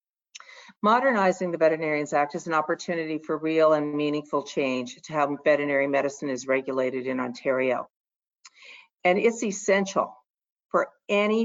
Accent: American